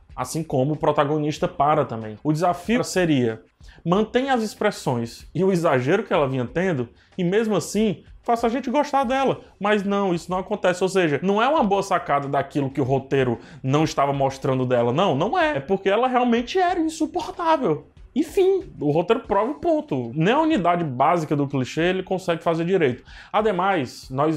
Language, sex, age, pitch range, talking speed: Portuguese, male, 20-39, 130-190 Hz, 180 wpm